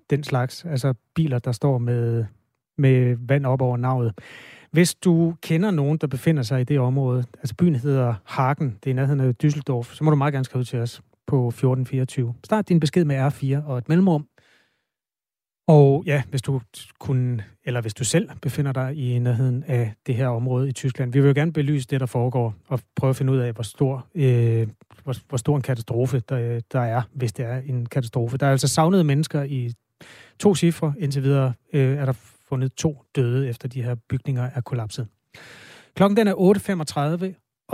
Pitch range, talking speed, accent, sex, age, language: 120-150 Hz, 190 wpm, native, male, 30-49, Danish